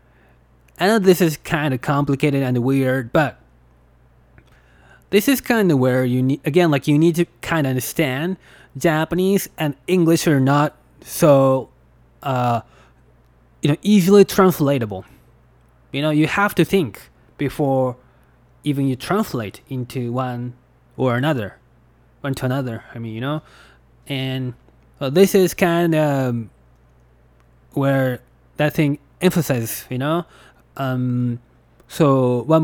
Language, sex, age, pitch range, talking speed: English, male, 20-39, 120-160 Hz, 130 wpm